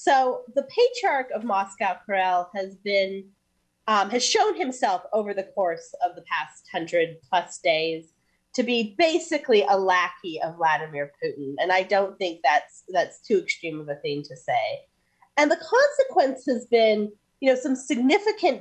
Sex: female